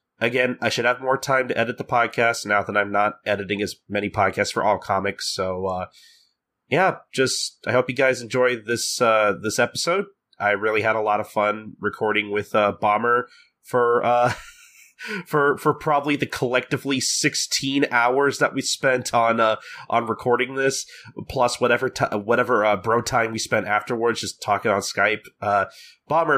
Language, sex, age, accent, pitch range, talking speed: English, male, 30-49, American, 105-130 Hz, 175 wpm